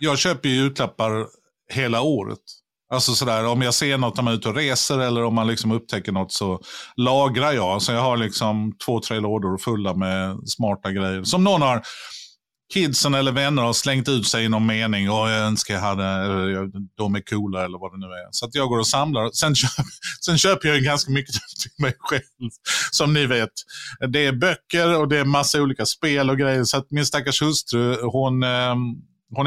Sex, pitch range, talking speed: male, 115-145 Hz, 210 wpm